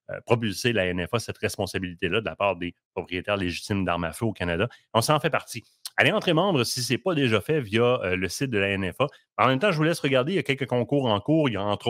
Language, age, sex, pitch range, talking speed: French, 30-49, male, 100-130 Hz, 270 wpm